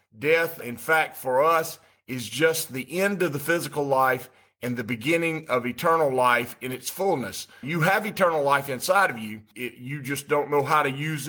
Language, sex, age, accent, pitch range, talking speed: English, male, 50-69, American, 130-160 Hz, 195 wpm